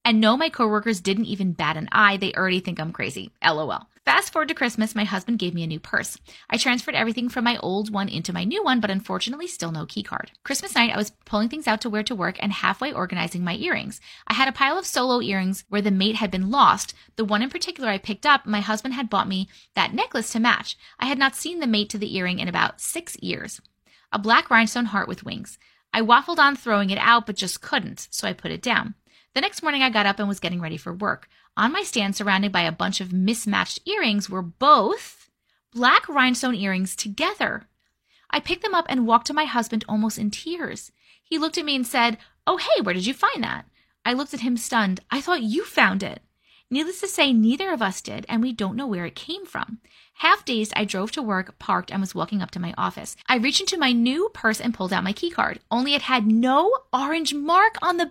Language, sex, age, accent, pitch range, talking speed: English, female, 20-39, American, 200-280 Hz, 240 wpm